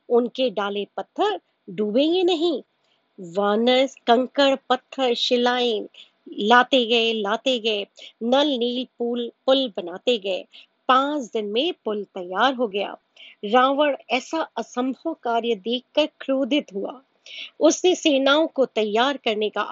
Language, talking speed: Hindi, 105 wpm